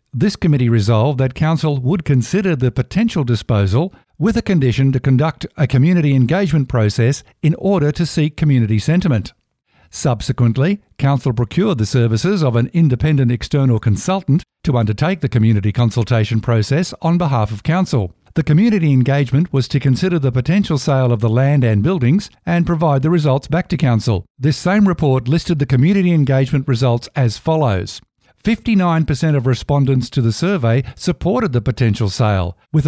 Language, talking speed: English, 160 wpm